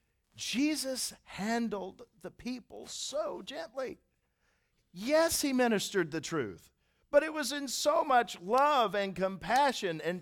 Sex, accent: male, American